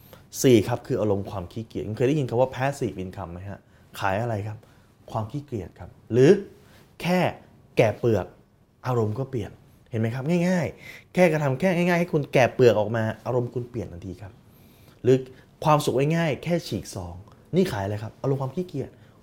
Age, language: 20-39, Thai